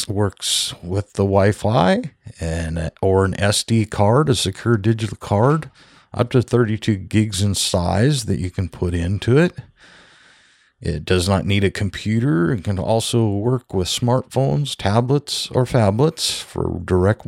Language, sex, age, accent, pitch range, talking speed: English, male, 50-69, American, 95-130 Hz, 145 wpm